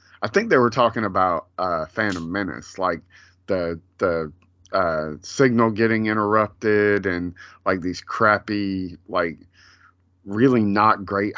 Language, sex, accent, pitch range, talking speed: English, male, American, 90-115 Hz, 125 wpm